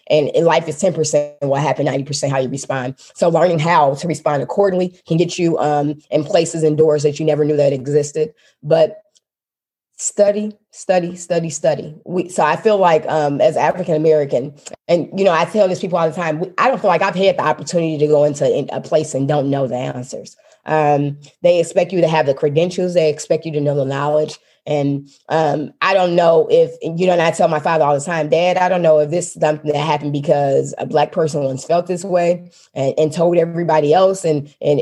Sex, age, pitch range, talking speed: female, 20-39, 150-180 Hz, 220 wpm